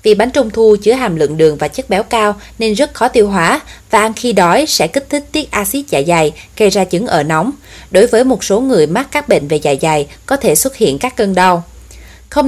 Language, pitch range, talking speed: Vietnamese, 185-240 Hz, 250 wpm